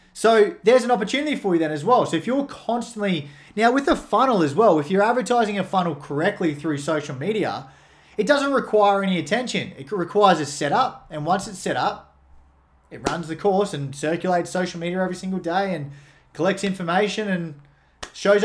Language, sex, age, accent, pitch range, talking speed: English, male, 20-39, Australian, 145-195 Hz, 190 wpm